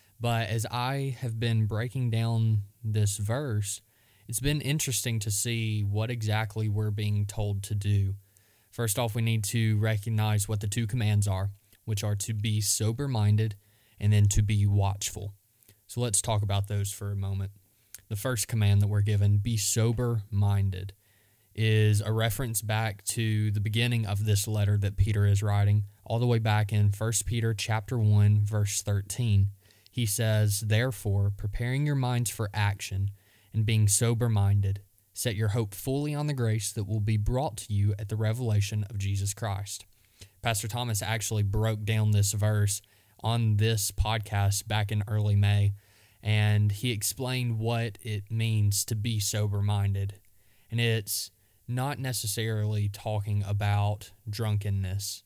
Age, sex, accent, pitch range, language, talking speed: 20-39, male, American, 100-115 Hz, English, 155 wpm